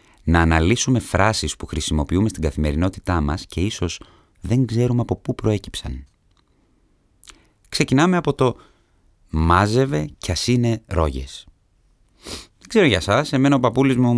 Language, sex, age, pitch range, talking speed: Greek, male, 30-49, 80-125 Hz, 130 wpm